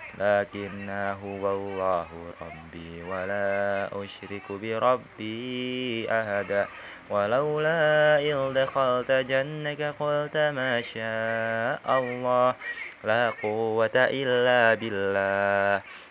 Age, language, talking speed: 20-39, Indonesian, 75 wpm